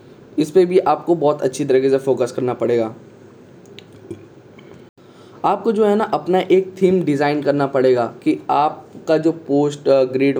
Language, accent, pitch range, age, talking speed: Hindi, native, 135-160 Hz, 10-29, 150 wpm